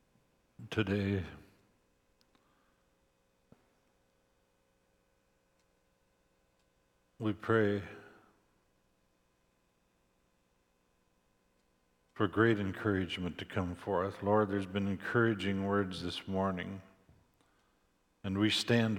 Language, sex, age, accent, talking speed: English, male, 60-79, American, 60 wpm